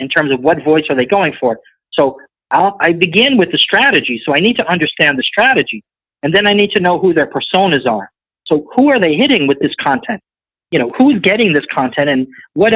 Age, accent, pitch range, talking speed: 40-59, American, 135-190 Hz, 230 wpm